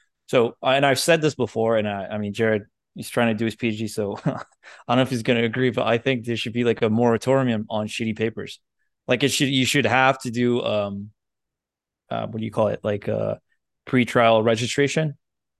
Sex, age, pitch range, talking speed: male, 20-39, 110-125 Hz, 220 wpm